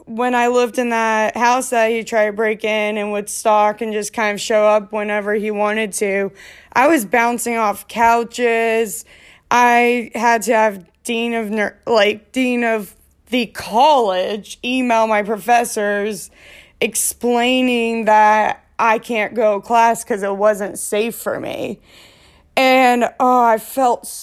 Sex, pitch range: female, 215-275 Hz